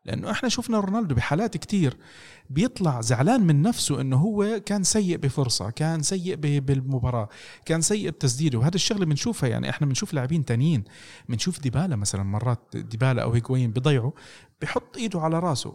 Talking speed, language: 155 wpm, Arabic